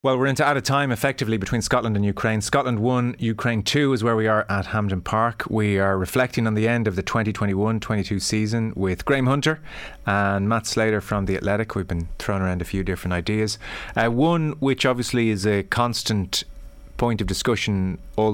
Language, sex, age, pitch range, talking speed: English, male, 30-49, 95-110 Hz, 195 wpm